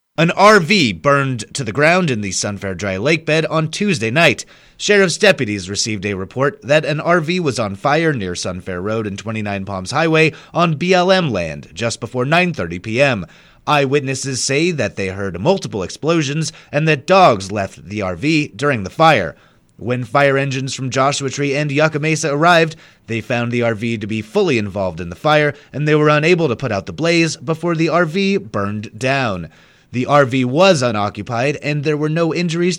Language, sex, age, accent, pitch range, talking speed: English, male, 30-49, American, 105-160 Hz, 180 wpm